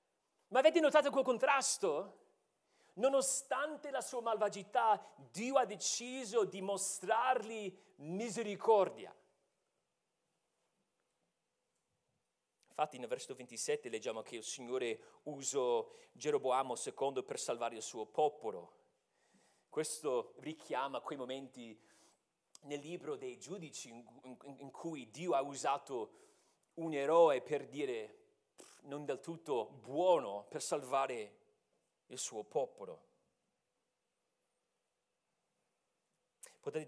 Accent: native